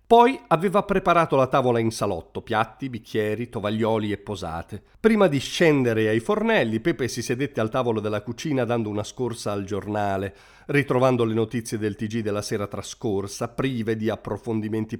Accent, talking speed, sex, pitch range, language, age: native, 160 wpm, male, 105-130 Hz, Italian, 40-59